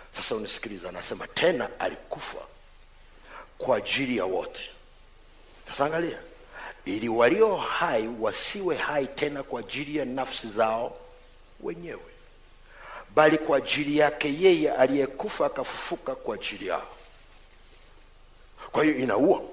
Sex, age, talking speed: male, 50-69, 110 wpm